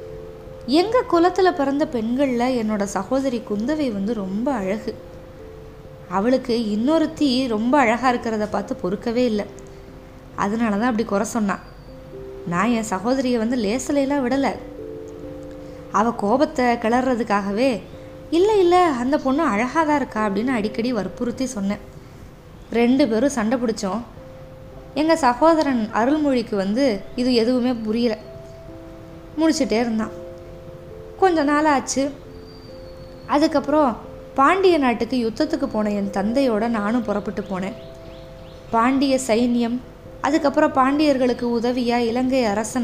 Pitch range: 205-265 Hz